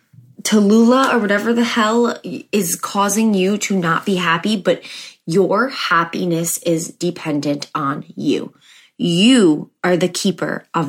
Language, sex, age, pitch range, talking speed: English, female, 20-39, 170-220 Hz, 130 wpm